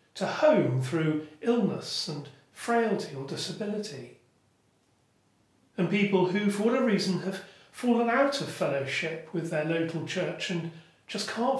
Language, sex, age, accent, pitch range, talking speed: English, male, 40-59, British, 155-205 Hz, 135 wpm